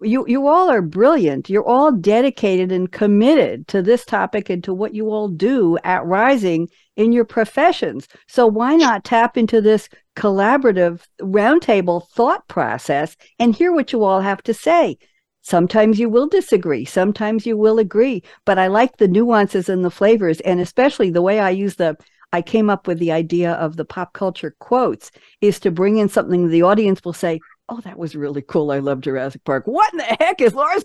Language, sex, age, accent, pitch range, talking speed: English, female, 60-79, American, 180-245 Hz, 195 wpm